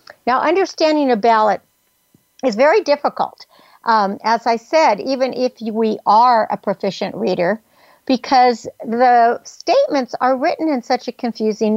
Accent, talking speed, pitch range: American, 140 wpm, 210-270 Hz